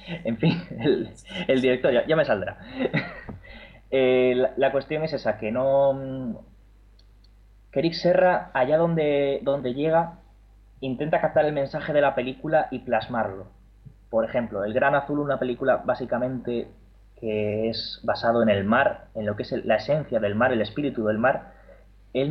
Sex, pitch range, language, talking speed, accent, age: male, 110-140 Hz, Spanish, 160 wpm, Spanish, 20-39